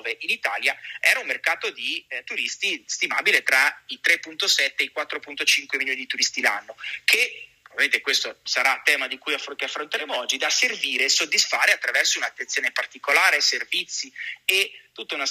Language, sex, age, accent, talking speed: Italian, male, 30-49, native, 155 wpm